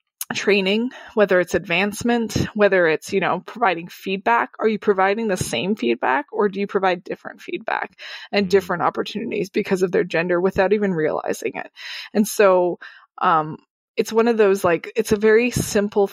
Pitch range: 185-225 Hz